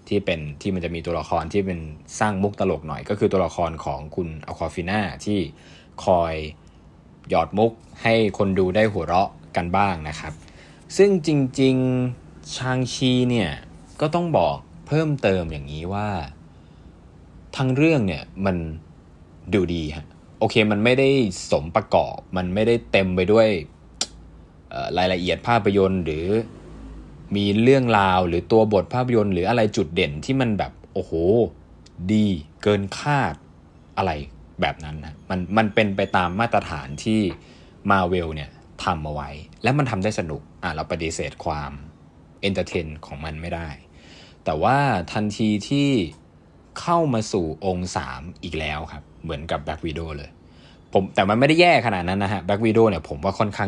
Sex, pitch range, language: male, 80-105 Hz, Thai